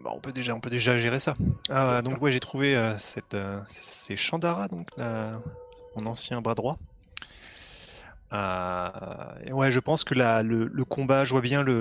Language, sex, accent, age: French, male, French, 20-39